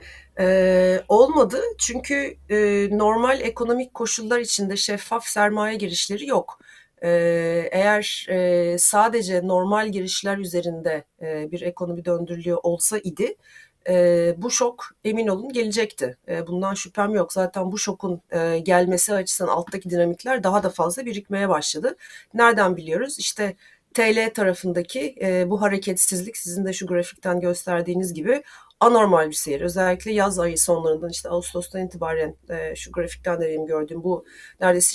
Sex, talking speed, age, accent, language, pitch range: female, 135 wpm, 40-59, native, Turkish, 175-215 Hz